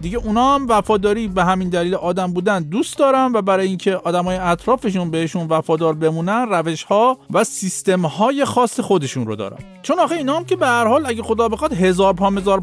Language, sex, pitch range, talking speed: Persian, male, 170-240 Hz, 205 wpm